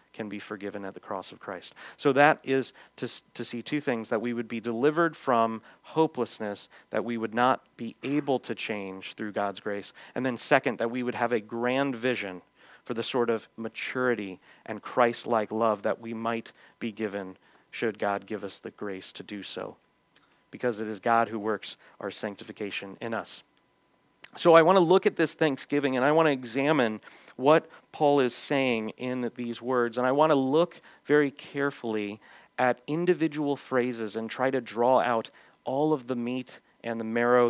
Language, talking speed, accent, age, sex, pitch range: English, 190 wpm, American, 40-59, male, 110-140 Hz